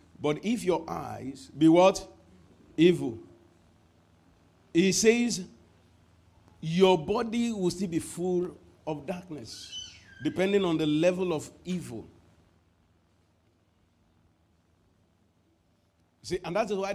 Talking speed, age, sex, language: 95 wpm, 50-69, male, English